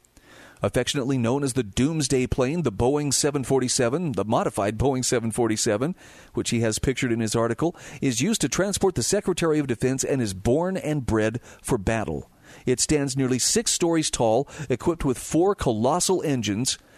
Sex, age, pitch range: male, 40-59, 110-150 Hz